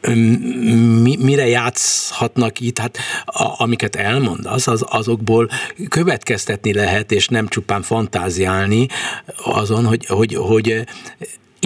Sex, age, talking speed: male, 60-79, 105 wpm